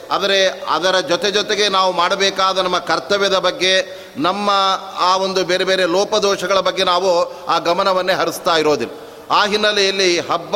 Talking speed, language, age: 135 wpm, Kannada, 30-49